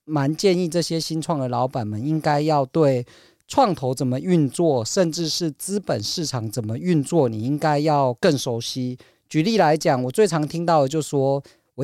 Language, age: Chinese, 40-59